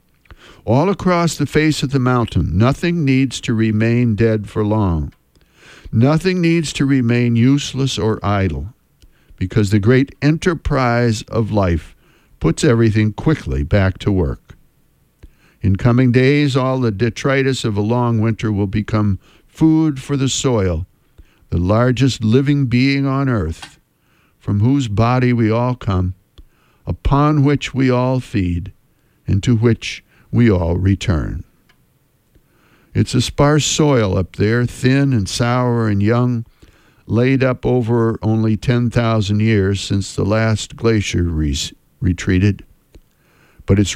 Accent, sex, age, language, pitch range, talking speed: American, male, 60-79, English, 100-130 Hz, 130 wpm